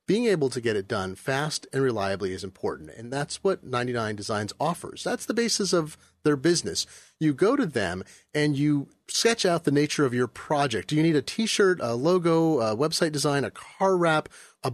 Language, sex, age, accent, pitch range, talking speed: English, male, 30-49, American, 125-165 Hz, 200 wpm